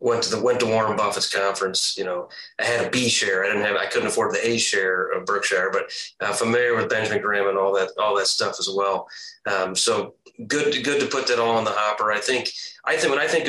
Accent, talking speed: American, 260 wpm